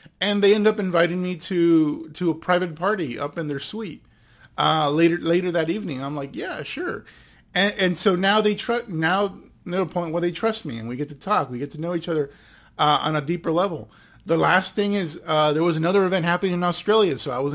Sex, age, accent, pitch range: male, 30-49, American, 140-175 Hz